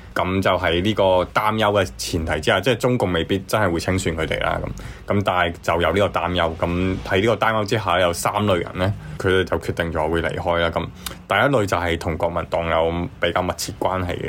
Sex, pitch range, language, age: male, 85-100 Hz, Chinese, 20-39